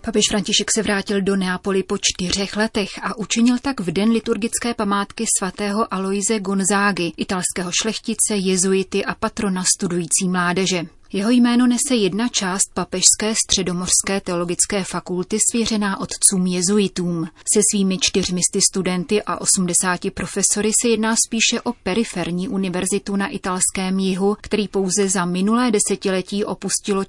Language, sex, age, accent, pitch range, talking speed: Czech, female, 30-49, native, 180-210 Hz, 135 wpm